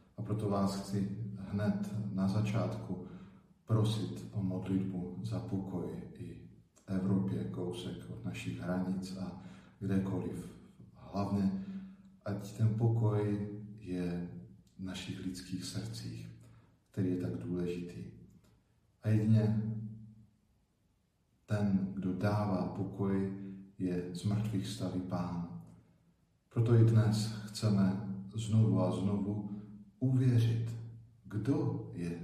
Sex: male